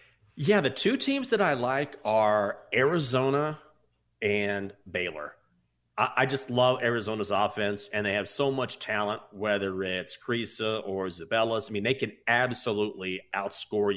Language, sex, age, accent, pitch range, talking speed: English, male, 30-49, American, 110-140 Hz, 145 wpm